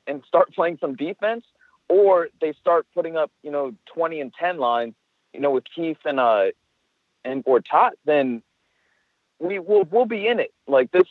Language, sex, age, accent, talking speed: English, male, 40-59, American, 185 wpm